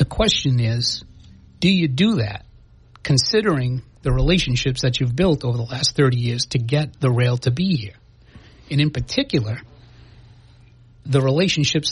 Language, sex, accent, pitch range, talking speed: English, male, American, 120-150 Hz, 150 wpm